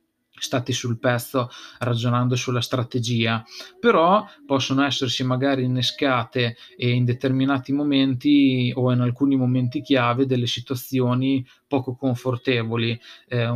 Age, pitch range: 20-39, 120-135 Hz